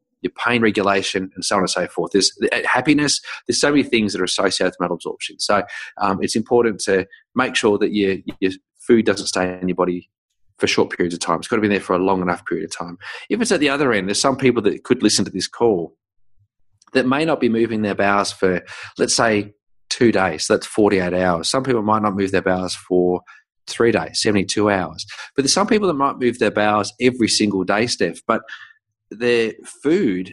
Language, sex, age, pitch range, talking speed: English, male, 30-49, 95-115 Hz, 220 wpm